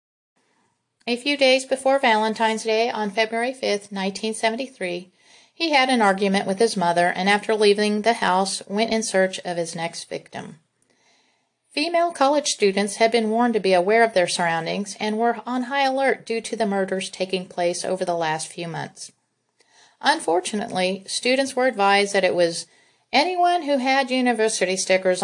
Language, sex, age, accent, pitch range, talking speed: English, female, 40-59, American, 180-230 Hz, 165 wpm